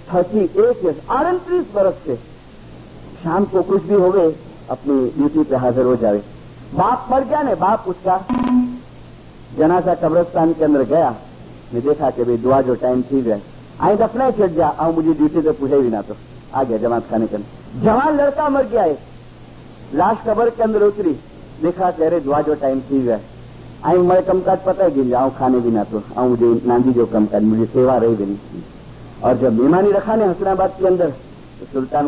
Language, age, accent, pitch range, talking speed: English, 50-69, Indian, 120-175 Hz, 125 wpm